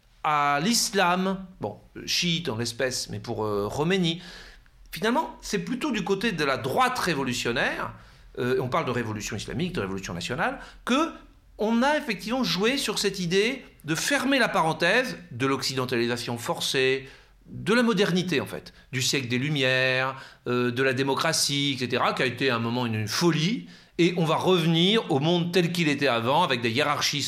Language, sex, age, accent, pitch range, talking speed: French, male, 40-59, French, 125-195 Hz, 170 wpm